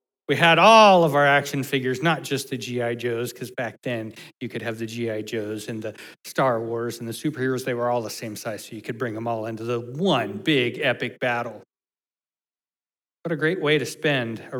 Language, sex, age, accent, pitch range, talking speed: English, male, 40-59, American, 120-185 Hz, 220 wpm